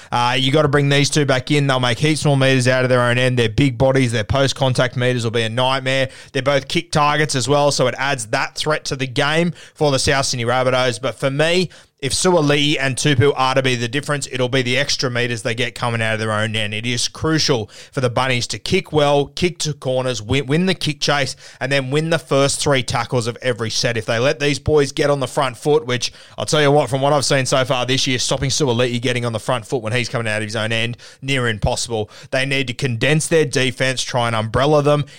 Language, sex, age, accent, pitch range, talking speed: English, male, 20-39, Australian, 120-145 Hz, 255 wpm